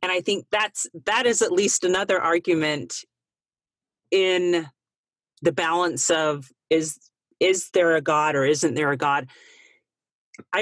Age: 40-59